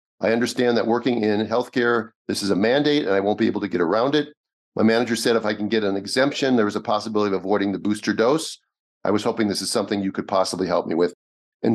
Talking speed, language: 255 wpm, English